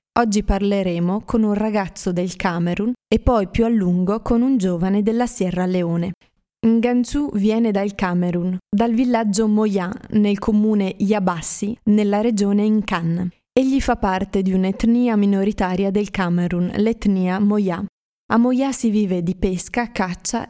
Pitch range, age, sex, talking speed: 190-220 Hz, 20-39, female, 140 wpm